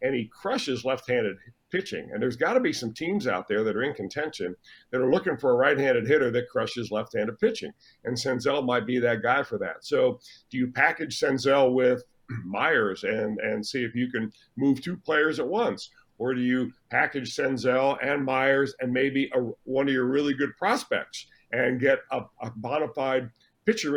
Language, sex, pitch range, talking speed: English, male, 120-140 Hz, 195 wpm